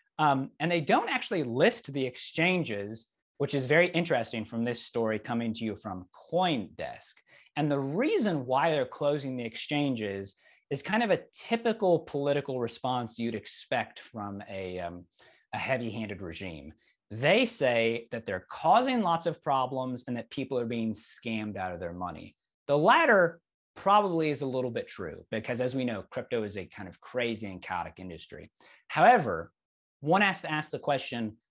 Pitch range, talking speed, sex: 110-145 Hz, 170 wpm, male